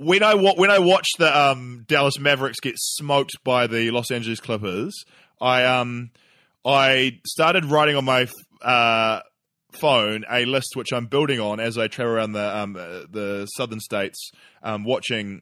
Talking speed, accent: 155 wpm, Australian